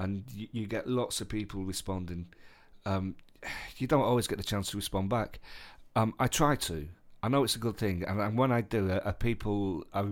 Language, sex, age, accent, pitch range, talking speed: English, male, 40-59, British, 90-115 Hz, 215 wpm